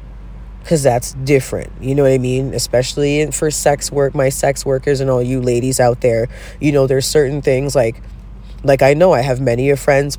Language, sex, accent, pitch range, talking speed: English, female, American, 120-145 Hz, 205 wpm